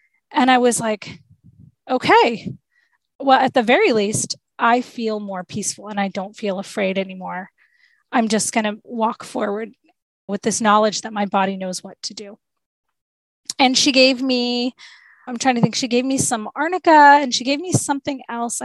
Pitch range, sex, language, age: 215-260 Hz, female, English, 20-39